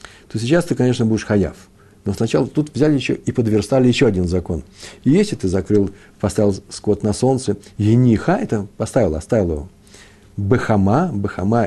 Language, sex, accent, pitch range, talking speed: Russian, male, native, 95-115 Hz, 160 wpm